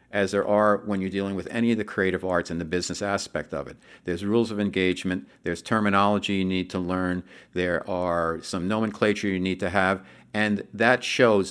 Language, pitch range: English, 90-110 Hz